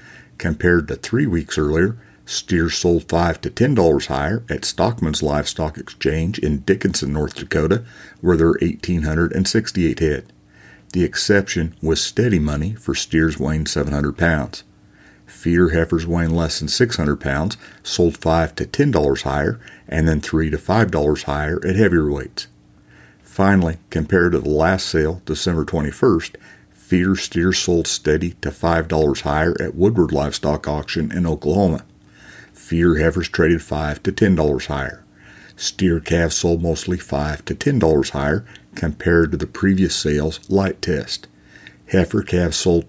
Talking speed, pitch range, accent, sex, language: 140 wpm, 75-95 Hz, American, male, English